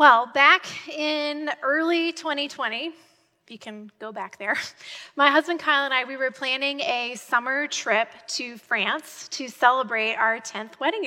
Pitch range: 230-295 Hz